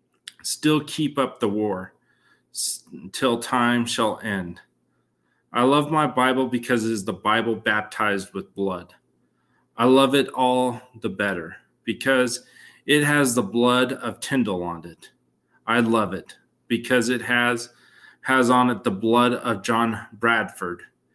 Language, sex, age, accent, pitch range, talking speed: English, male, 30-49, American, 115-140 Hz, 140 wpm